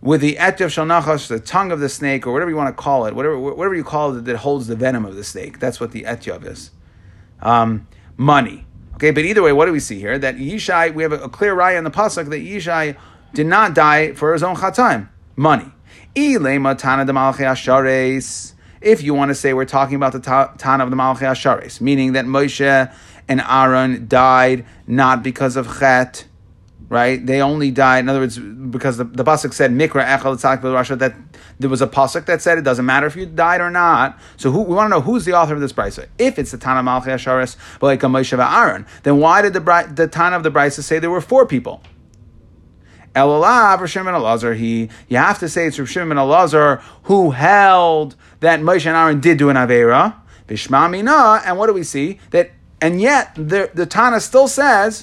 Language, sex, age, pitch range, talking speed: English, male, 30-49, 130-170 Hz, 210 wpm